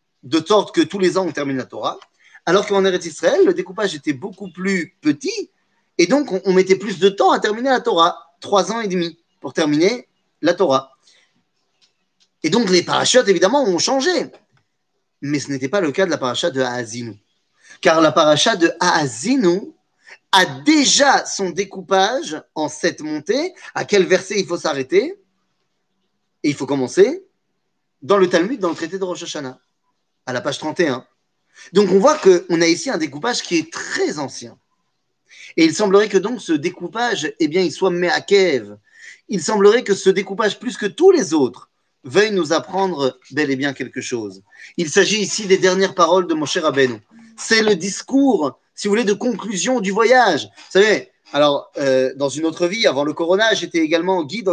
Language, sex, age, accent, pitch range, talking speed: French, male, 30-49, French, 155-220 Hz, 185 wpm